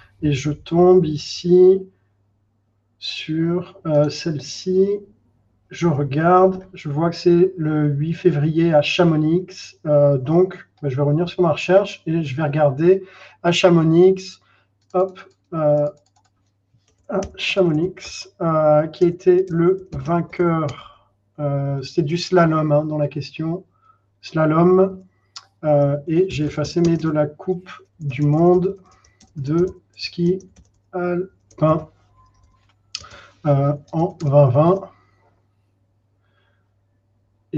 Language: French